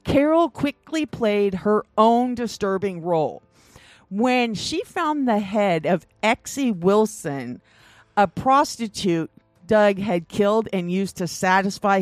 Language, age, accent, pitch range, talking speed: English, 50-69, American, 170-230 Hz, 120 wpm